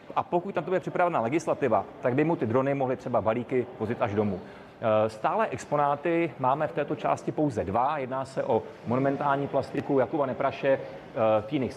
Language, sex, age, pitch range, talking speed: Czech, male, 30-49, 125-150 Hz, 170 wpm